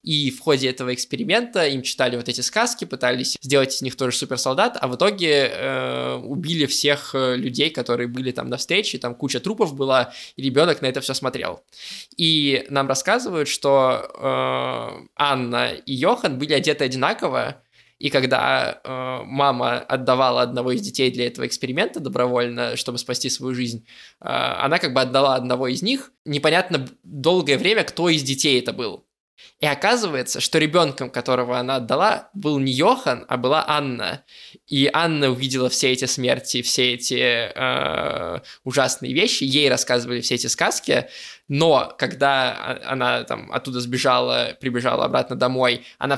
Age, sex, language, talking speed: 20-39, male, Russian, 155 wpm